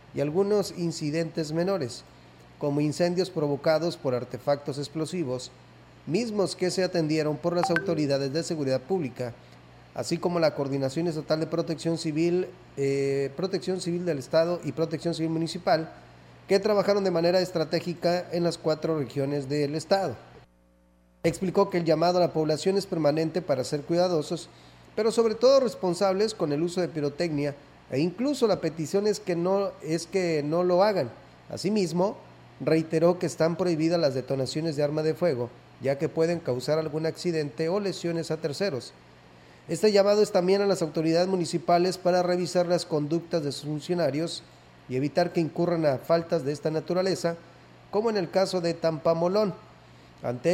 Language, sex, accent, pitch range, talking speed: Spanish, male, Mexican, 145-180 Hz, 155 wpm